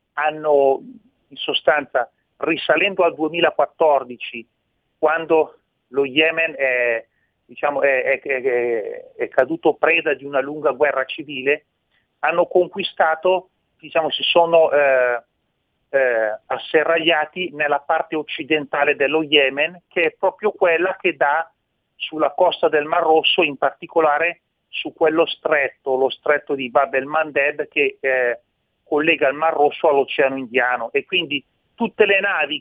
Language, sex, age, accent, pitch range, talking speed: Italian, male, 40-59, native, 140-170 Hz, 115 wpm